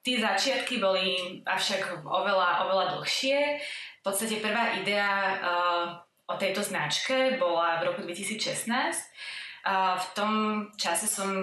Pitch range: 175-210 Hz